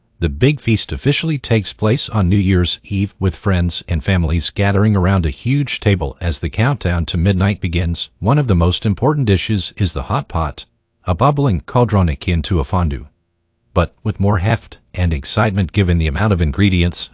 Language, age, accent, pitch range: Chinese, 50-69, American, 80-105 Hz